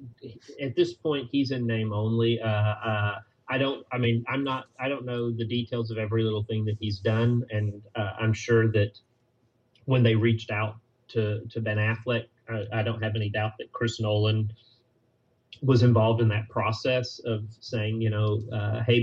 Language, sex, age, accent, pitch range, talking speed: English, male, 30-49, American, 110-120 Hz, 190 wpm